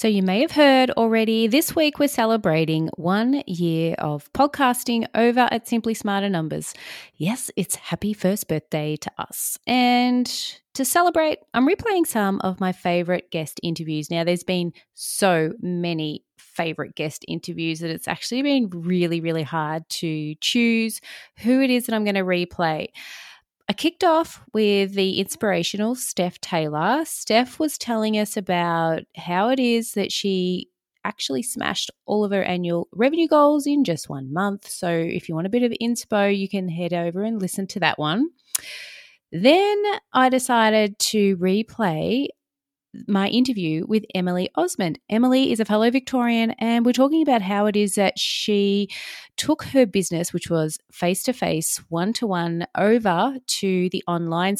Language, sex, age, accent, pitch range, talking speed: English, female, 20-39, Australian, 175-245 Hz, 165 wpm